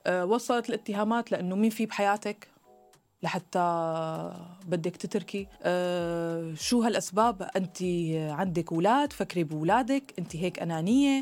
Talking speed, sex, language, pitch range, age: 105 wpm, female, Arabic, 165-240 Hz, 20-39